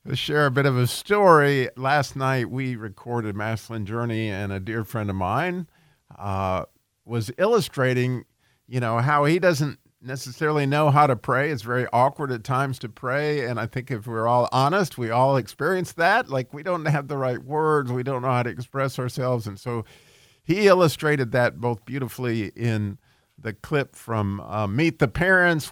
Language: English